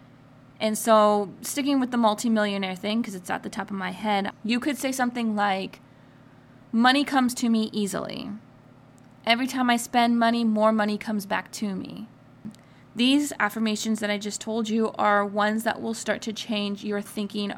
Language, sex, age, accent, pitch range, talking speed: English, female, 20-39, American, 200-240 Hz, 180 wpm